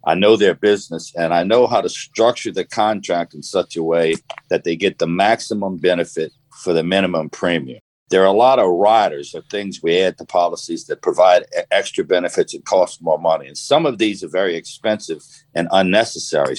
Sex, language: male, English